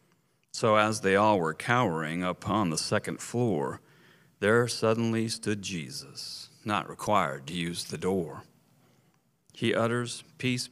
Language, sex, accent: English, male, American